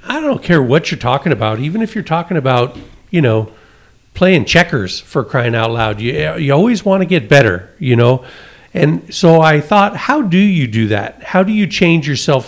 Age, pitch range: 50-69, 125-175 Hz